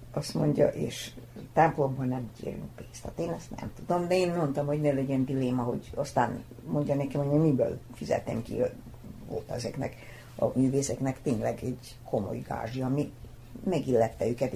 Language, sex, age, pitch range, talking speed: Hungarian, female, 60-79, 120-155 Hz, 150 wpm